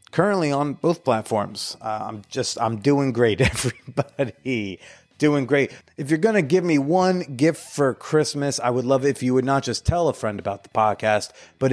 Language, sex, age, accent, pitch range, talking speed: English, male, 30-49, American, 115-155 Hz, 195 wpm